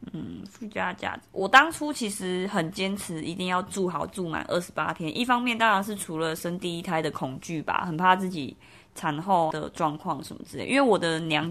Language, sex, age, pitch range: Chinese, female, 20-39, 160-200 Hz